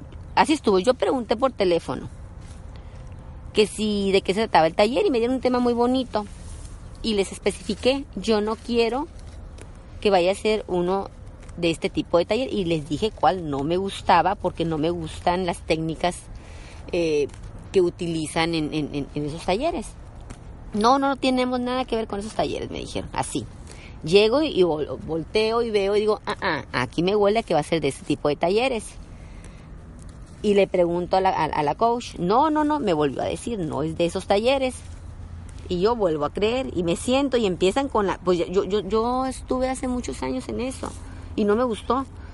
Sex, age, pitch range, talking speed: female, 30-49, 160-240 Hz, 200 wpm